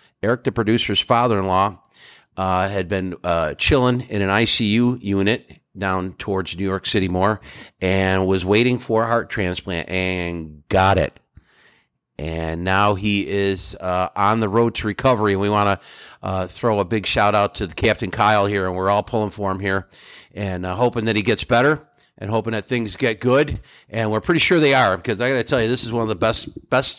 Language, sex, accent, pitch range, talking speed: English, male, American, 95-120 Hz, 200 wpm